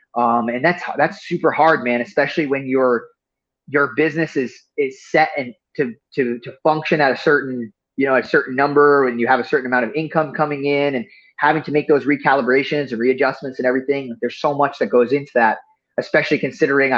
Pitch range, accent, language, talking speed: 120-155 Hz, American, English, 205 wpm